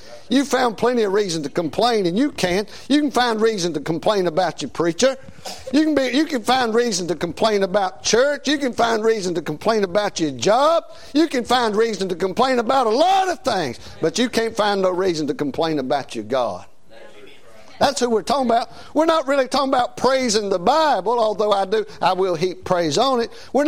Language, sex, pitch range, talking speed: English, male, 160-245 Hz, 210 wpm